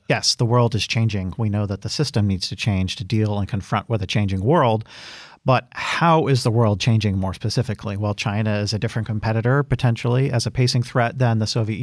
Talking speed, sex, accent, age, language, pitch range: 220 wpm, male, American, 40-59, English, 105-125 Hz